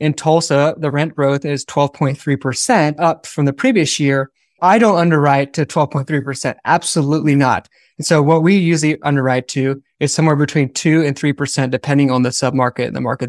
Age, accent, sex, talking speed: 20-39, American, male, 210 wpm